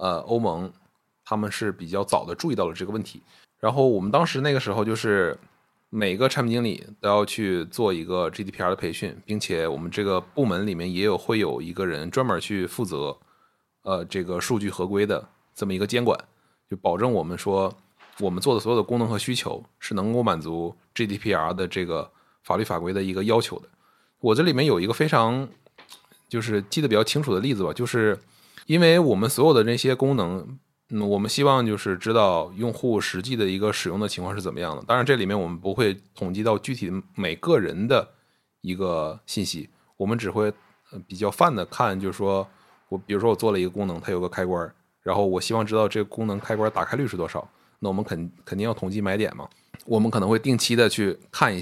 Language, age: Chinese, 20-39